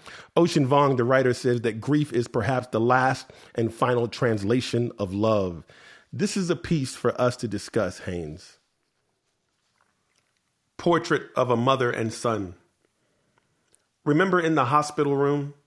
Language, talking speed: English, 140 wpm